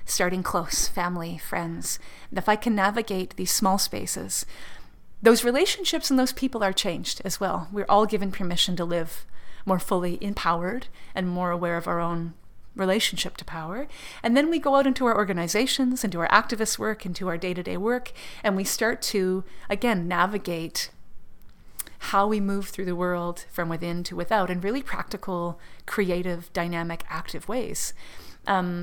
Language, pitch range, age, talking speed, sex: English, 175-220 Hz, 30-49, 165 wpm, female